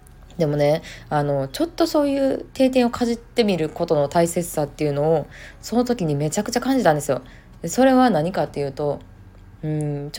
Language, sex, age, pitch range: Japanese, female, 20-39, 145-200 Hz